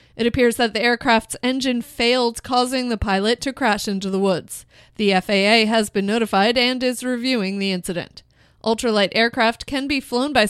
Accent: American